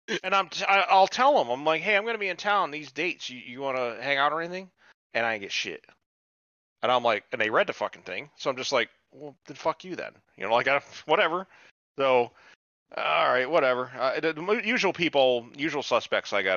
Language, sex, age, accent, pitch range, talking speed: English, male, 30-49, American, 100-165 Hz, 240 wpm